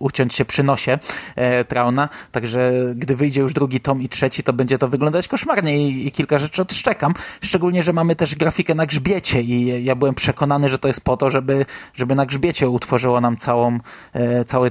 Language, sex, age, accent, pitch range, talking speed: Polish, male, 20-39, native, 130-150 Hz, 200 wpm